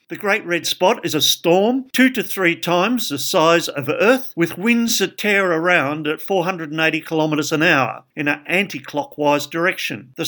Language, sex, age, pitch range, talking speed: English, male, 50-69, 145-180 Hz, 175 wpm